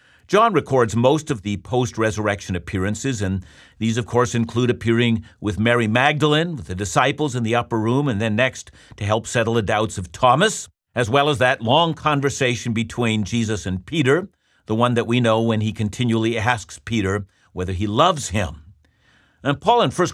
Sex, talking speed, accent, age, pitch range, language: male, 180 wpm, American, 50-69, 110-150 Hz, English